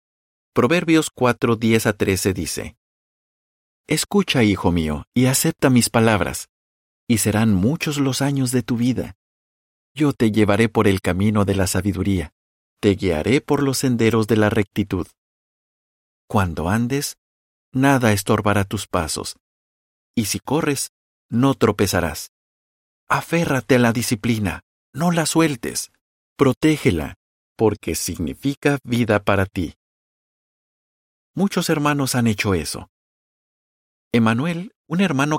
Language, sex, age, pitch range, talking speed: Spanish, male, 50-69, 95-135 Hz, 120 wpm